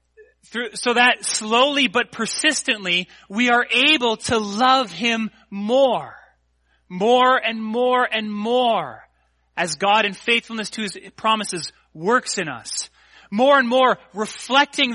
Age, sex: 30-49, male